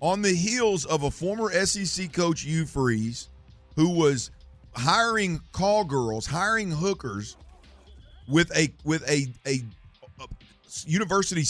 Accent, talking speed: American, 120 wpm